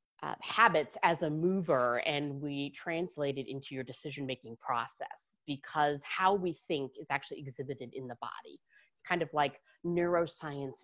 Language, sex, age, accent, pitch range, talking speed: English, female, 30-49, American, 135-175 Hz, 150 wpm